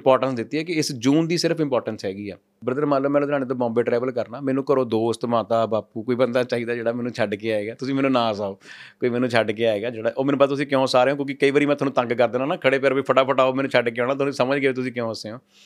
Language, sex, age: Punjabi, male, 30-49